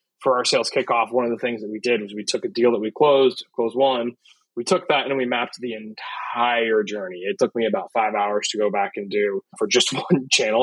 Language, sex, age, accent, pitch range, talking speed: English, male, 20-39, American, 125-185 Hz, 255 wpm